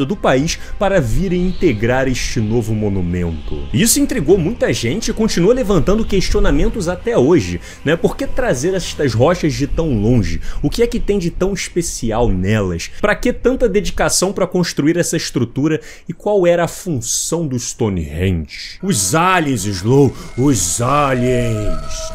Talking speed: 150 wpm